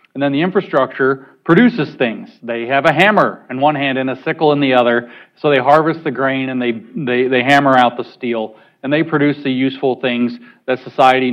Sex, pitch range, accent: male, 125-150 Hz, American